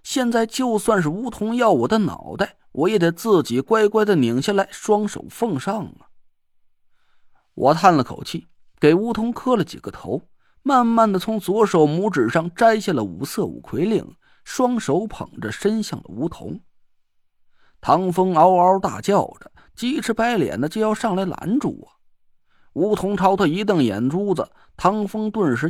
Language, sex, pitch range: Chinese, male, 150-220 Hz